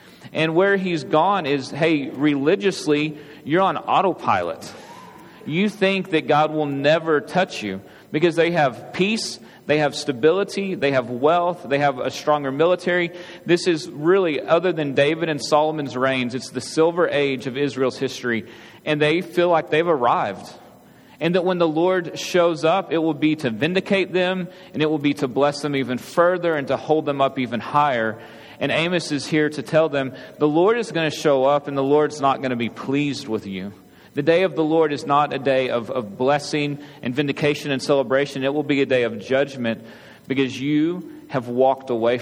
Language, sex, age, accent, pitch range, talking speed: English, male, 30-49, American, 135-165 Hz, 195 wpm